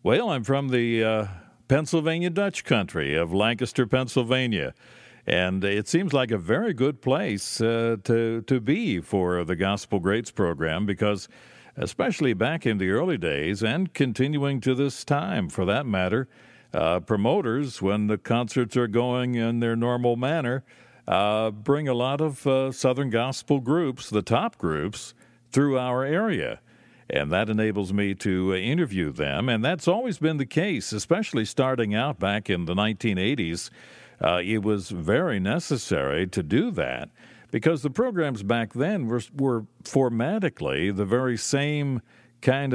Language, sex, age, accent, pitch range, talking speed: English, male, 60-79, American, 105-135 Hz, 150 wpm